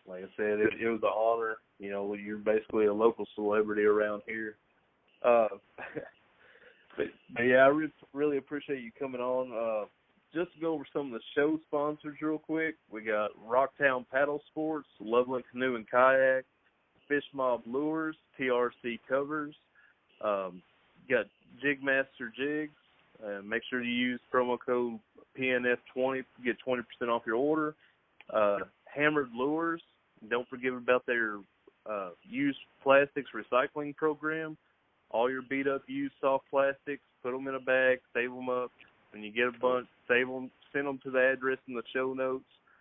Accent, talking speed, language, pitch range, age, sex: American, 160 wpm, English, 115-140 Hz, 30-49, male